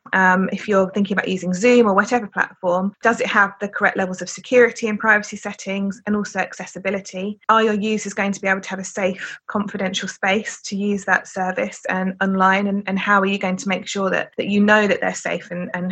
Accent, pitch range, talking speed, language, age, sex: British, 185-210 Hz, 230 wpm, English, 20-39, female